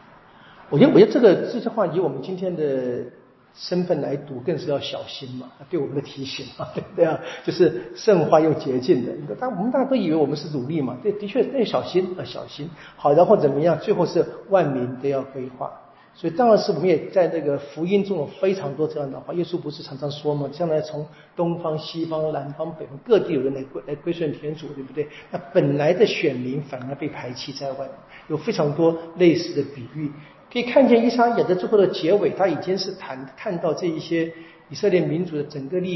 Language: Chinese